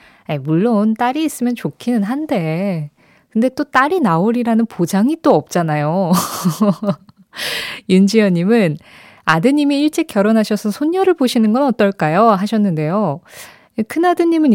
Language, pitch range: Korean, 170-245 Hz